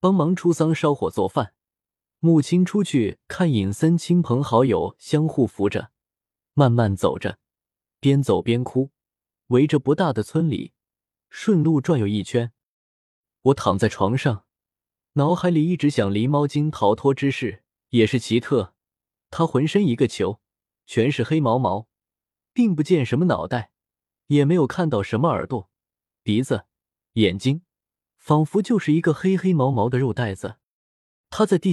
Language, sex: Chinese, male